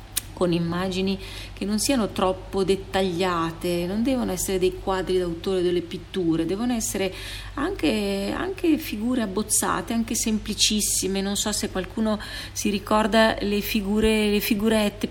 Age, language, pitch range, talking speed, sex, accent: 40-59, Italian, 175-215 Hz, 125 wpm, female, native